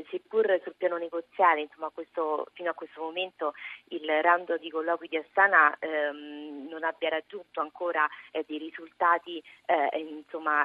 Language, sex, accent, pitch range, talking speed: Italian, female, native, 150-175 Hz, 145 wpm